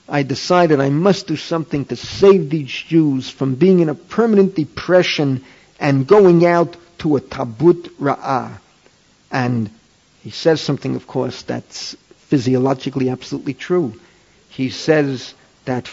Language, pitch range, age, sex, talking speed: English, 135-180 Hz, 50-69, male, 135 wpm